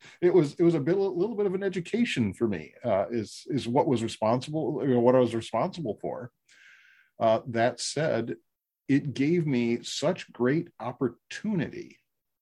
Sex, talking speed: male, 165 wpm